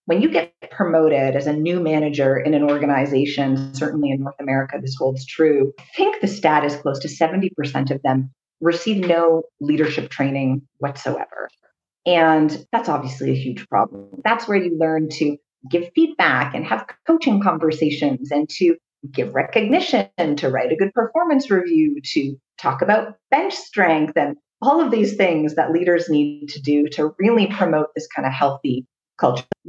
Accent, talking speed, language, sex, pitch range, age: American, 170 wpm, English, female, 140-185 Hz, 40-59